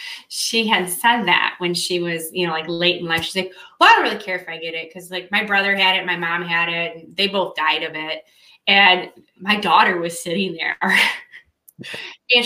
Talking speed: 225 wpm